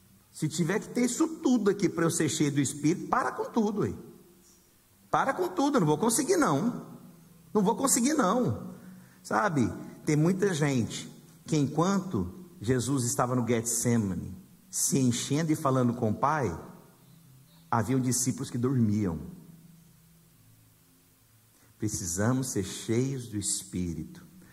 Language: Portuguese